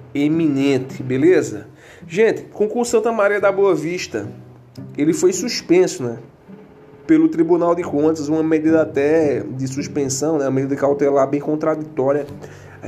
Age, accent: 20-39, Brazilian